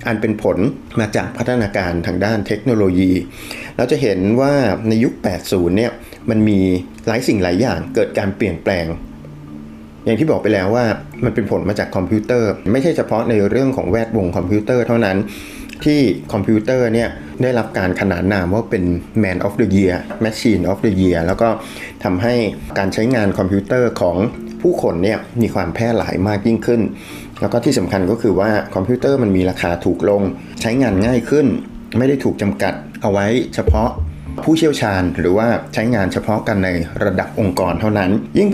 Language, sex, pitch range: Thai, male, 95-120 Hz